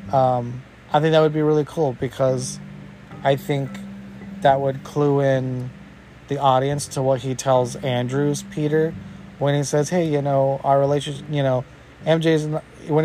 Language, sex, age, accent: English, male, 30-49, American